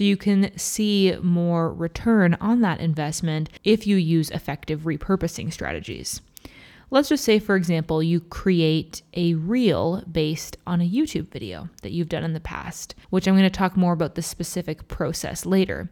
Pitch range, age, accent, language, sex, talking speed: 165-185 Hz, 20-39, American, English, female, 175 wpm